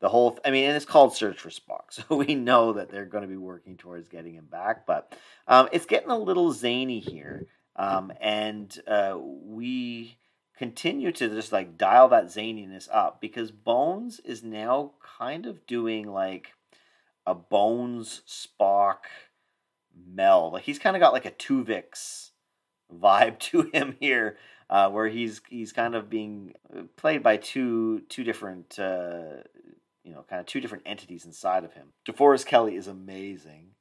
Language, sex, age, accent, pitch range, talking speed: English, male, 40-59, American, 95-120 Hz, 170 wpm